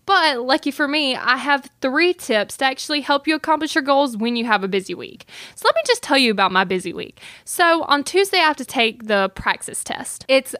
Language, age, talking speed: English, 10-29, 240 wpm